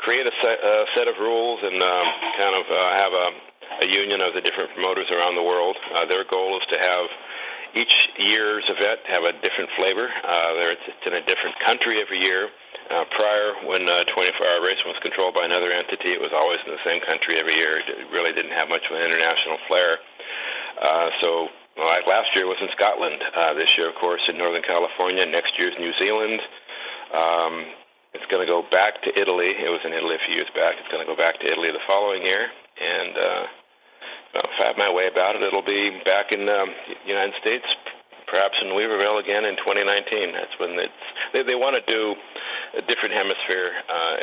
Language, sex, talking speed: English, male, 210 wpm